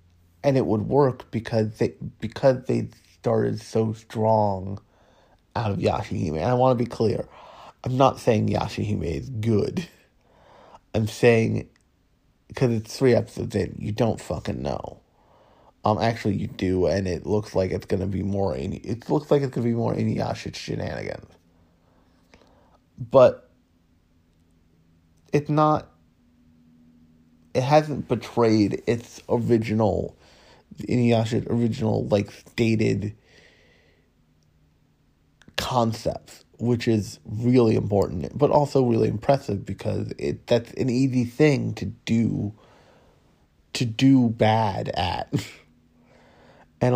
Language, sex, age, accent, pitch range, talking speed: English, male, 30-49, American, 90-120 Hz, 125 wpm